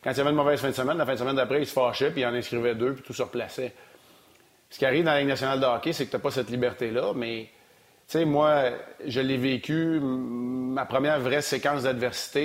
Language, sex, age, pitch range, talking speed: French, male, 40-59, 125-145 Hz, 255 wpm